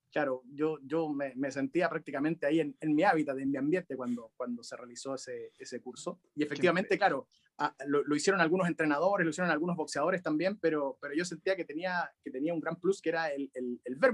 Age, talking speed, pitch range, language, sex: 30-49, 225 wpm, 135-165 Hz, Spanish, male